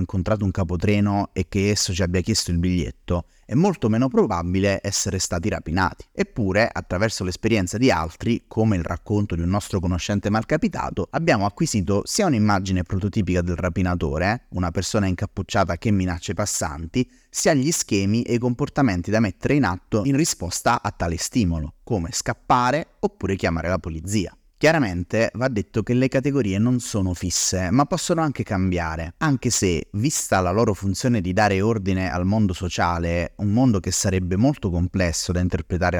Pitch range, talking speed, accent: 90-115 Hz, 165 wpm, native